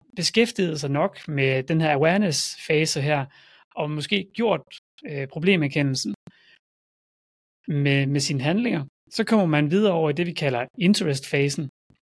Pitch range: 140-195 Hz